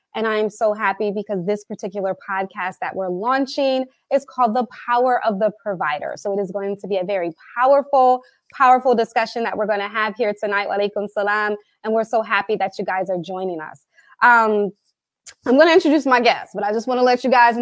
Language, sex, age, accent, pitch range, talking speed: English, female, 20-39, American, 195-245 Hz, 215 wpm